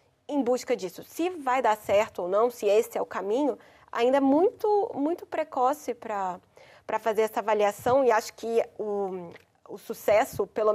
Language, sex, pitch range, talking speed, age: Portuguese, female, 215-275 Hz, 165 wpm, 20-39